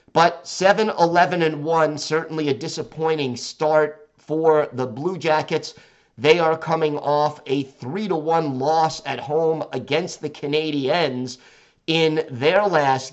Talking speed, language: 115 wpm, English